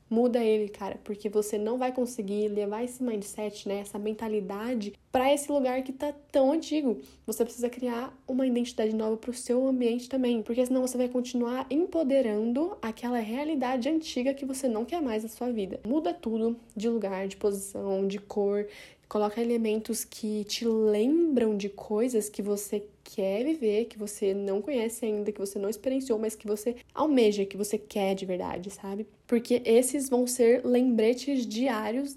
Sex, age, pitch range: female, 10-29, 210-250 Hz